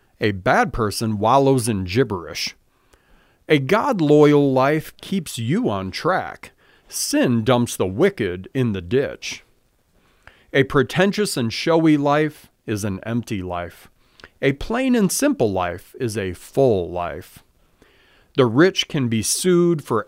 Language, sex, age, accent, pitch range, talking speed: English, male, 40-59, American, 115-175 Hz, 130 wpm